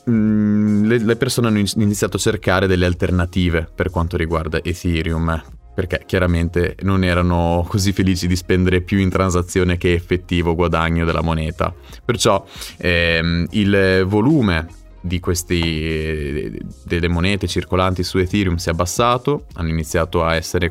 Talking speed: 135 wpm